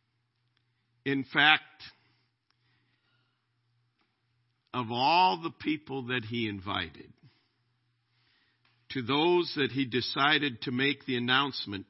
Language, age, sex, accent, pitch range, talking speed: English, 50-69, male, American, 120-150 Hz, 90 wpm